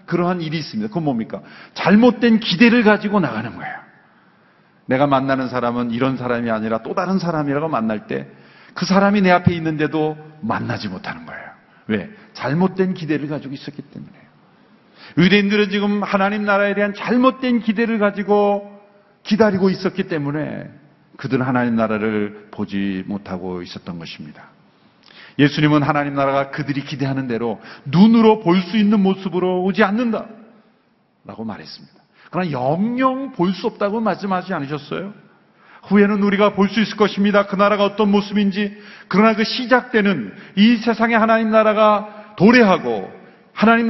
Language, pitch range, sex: Korean, 140-215 Hz, male